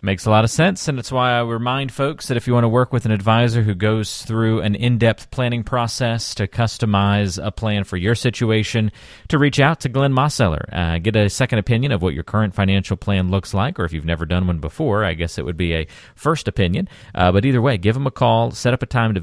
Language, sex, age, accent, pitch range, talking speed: English, male, 40-59, American, 90-120 Hz, 255 wpm